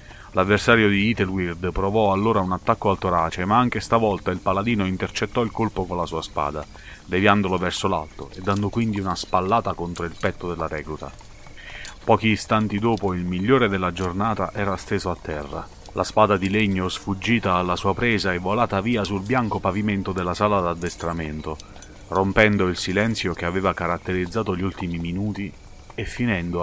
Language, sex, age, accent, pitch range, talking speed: Italian, male, 30-49, native, 85-105 Hz, 165 wpm